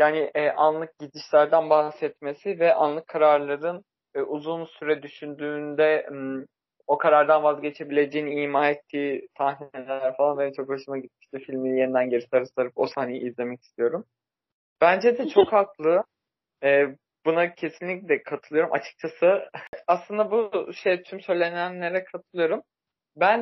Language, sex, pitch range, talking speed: Turkish, male, 135-165 Hz, 130 wpm